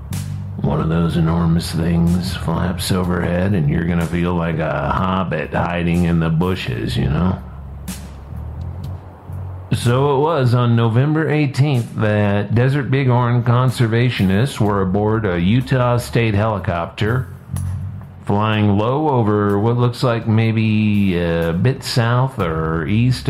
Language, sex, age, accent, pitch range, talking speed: English, male, 50-69, American, 90-110 Hz, 125 wpm